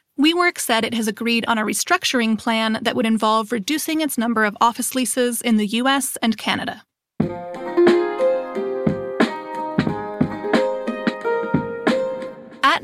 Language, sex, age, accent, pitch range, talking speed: English, female, 30-49, American, 220-280 Hz, 110 wpm